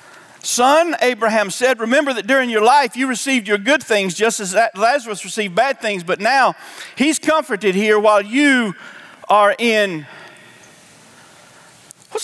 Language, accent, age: English, American, 50-69